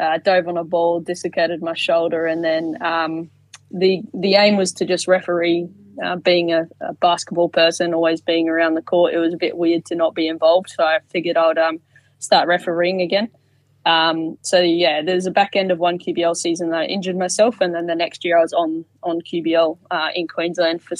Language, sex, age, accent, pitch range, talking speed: English, female, 20-39, Australian, 165-180 Hz, 215 wpm